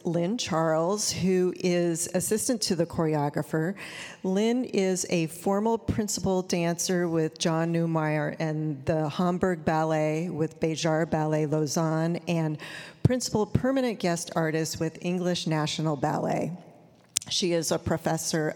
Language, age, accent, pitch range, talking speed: English, 40-59, American, 155-185 Hz, 125 wpm